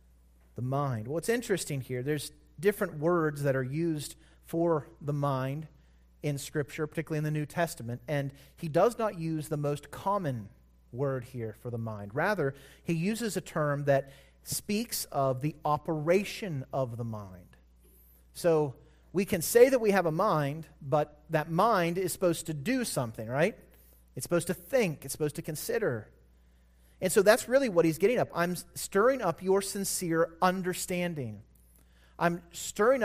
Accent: American